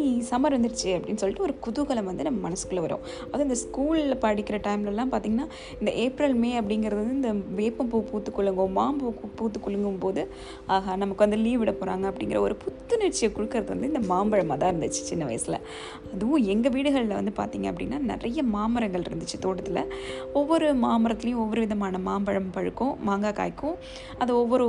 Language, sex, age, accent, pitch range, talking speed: Tamil, female, 20-39, native, 195-240 Hz, 85 wpm